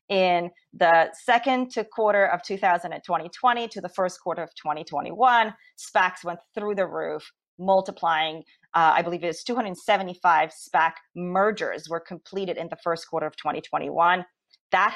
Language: English